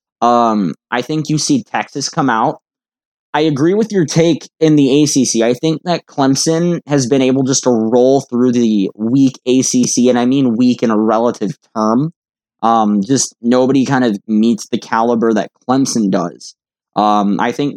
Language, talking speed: English, 175 wpm